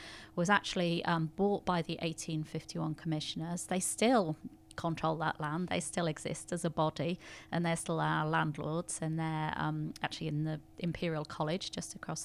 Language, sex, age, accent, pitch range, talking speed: English, female, 30-49, British, 160-180 Hz, 165 wpm